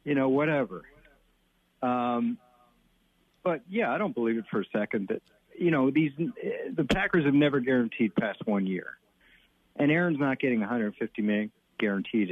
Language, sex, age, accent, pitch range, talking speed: English, male, 50-69, American, 110-145 Hz, 155 wpm